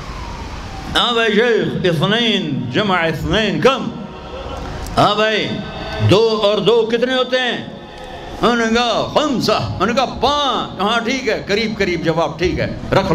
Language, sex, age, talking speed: Urdu, male, 60-79, 135 wpm